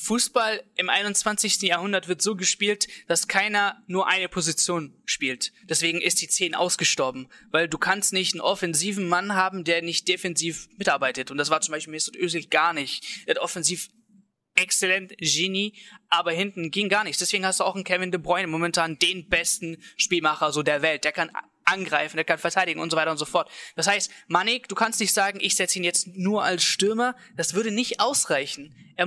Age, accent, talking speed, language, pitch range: 20-39, German, 190 wpm, German, 165-205 Hz